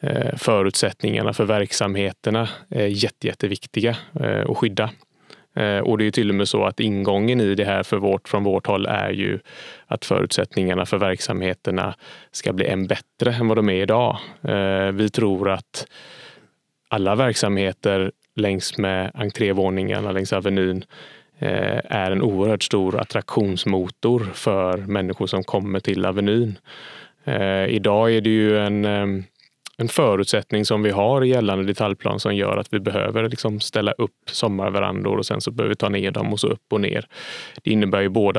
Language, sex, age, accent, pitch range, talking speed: Swedish, male, 20-39, Norwegian, 95-110 Hz, 155 wpm